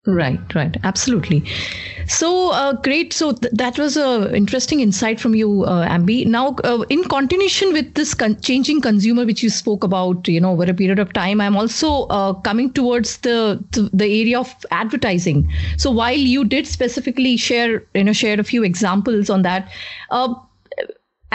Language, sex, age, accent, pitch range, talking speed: English, female, 30-49, Indian, 205-265 Hz, 180 wpm